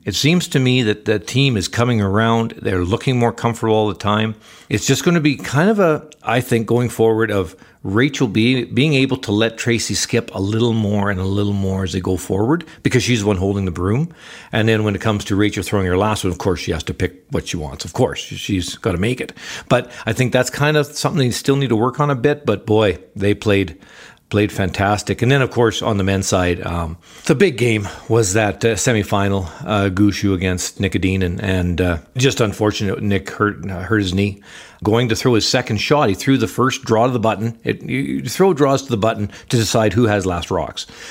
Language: English